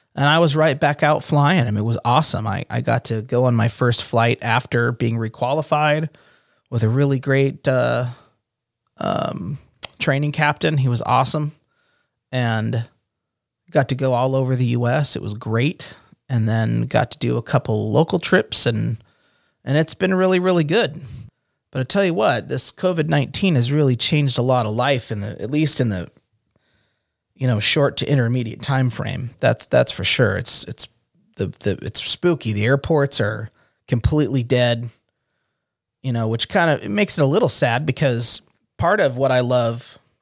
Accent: American